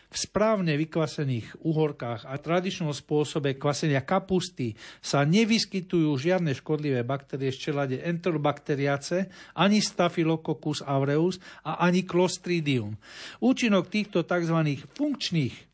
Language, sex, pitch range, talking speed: Slovak, male, 140-175 Hz, 105 wpm